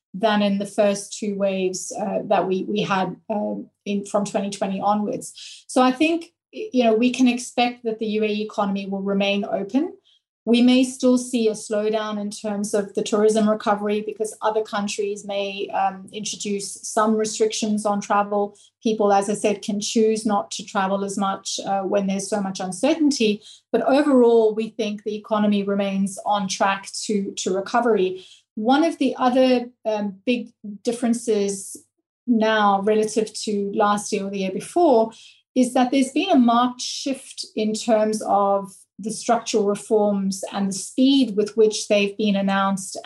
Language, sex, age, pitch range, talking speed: English, female, 30-49, 200-225 Hz, 165 wpm